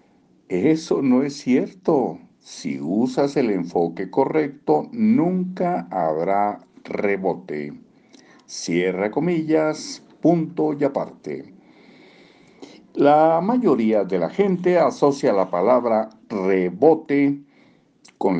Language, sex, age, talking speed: Spanish, male, 60-79, 90 wpm